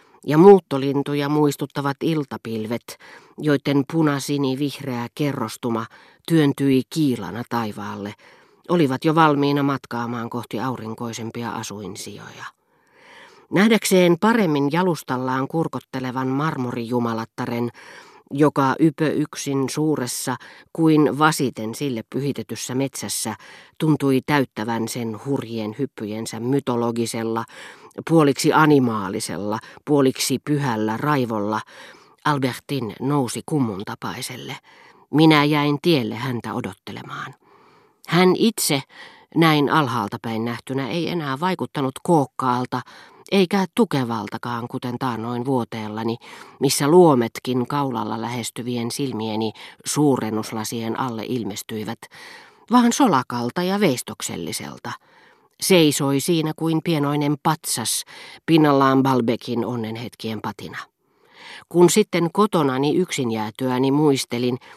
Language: Finnish